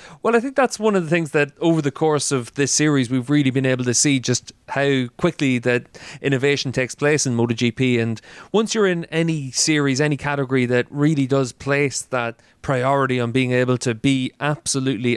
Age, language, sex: 30-49, English, male